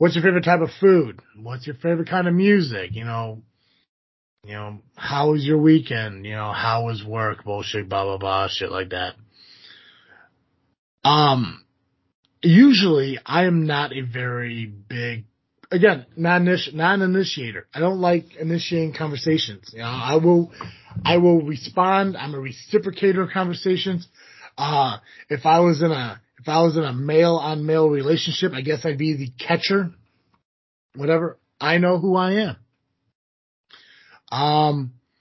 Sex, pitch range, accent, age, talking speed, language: male, 120-170 Hz, American, 30-49, 150 wpm, English